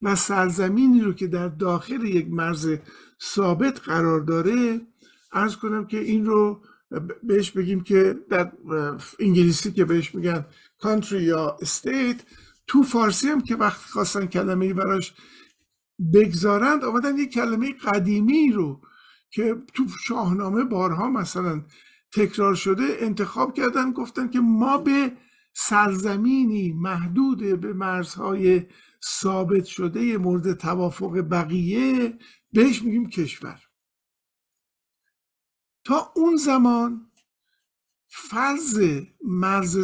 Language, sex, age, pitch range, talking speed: Persian, male, 50-69, 180-240 Hz, 105 wpm